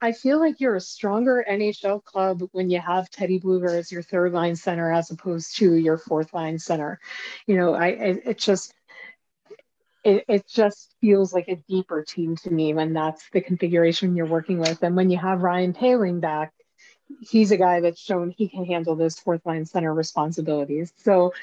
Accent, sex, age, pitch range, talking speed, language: American, female, 40-59, 170-215 Hz, 195 wpm, English